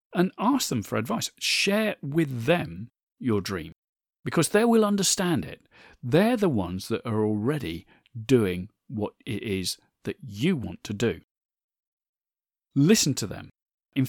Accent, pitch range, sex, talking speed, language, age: British, 115-185 Hz, male, 145 wpm, English, 40-59